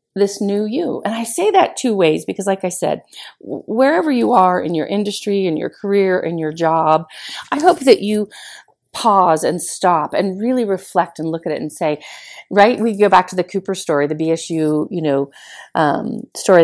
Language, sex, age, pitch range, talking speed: English, female, 40-59, 180-230 Hz, 200 wpm